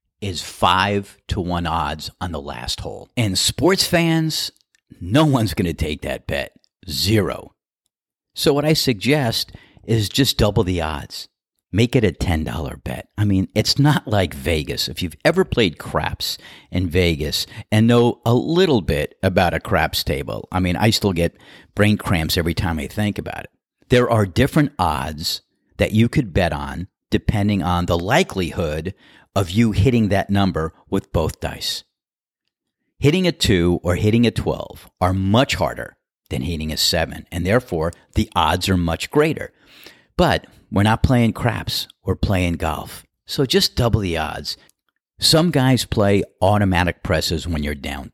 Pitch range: 85-115 Hz